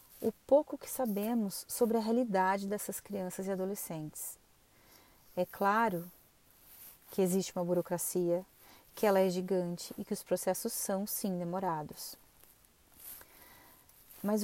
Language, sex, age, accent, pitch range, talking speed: Portuguese, female, 30-49, Brazilian, 180-225 Hz, 120 wpm